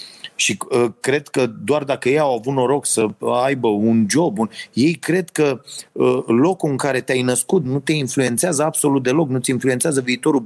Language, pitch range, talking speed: Romanian, 105-135 Hz, 180 wpm